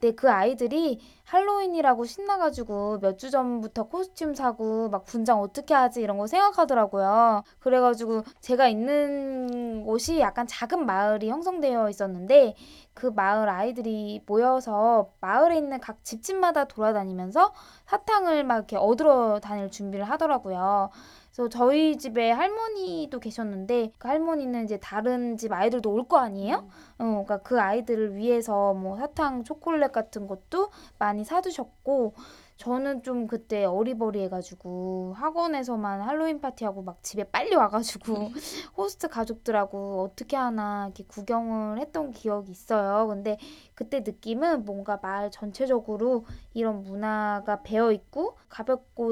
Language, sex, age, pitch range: Korean, female, 20-39, 210-275 Hz